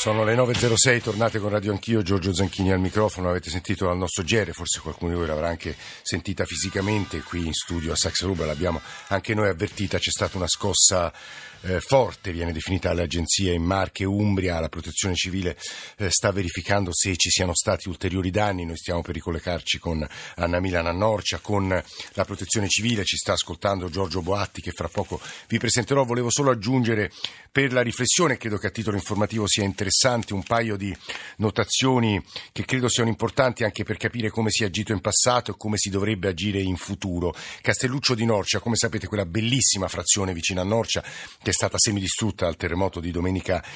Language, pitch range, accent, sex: Italian, 90-115 Hz, native, male